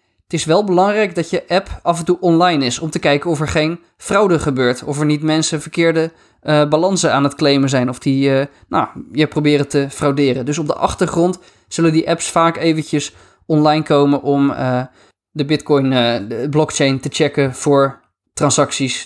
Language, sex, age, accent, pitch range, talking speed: Dutch, male, 20-39, Dutch, 140-165 Hz, 190 wpm